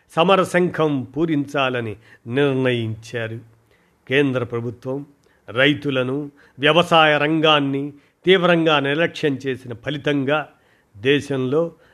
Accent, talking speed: native, 65 wpm